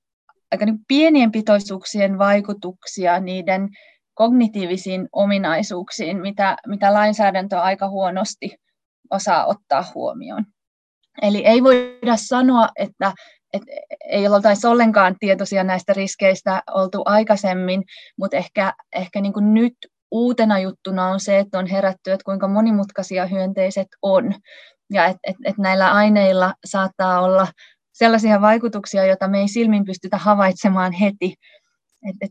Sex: female